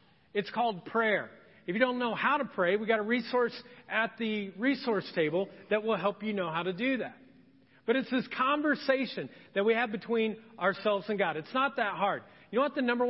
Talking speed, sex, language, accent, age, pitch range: 215 wpm, male, English, American, 40-59, 195-260 Hz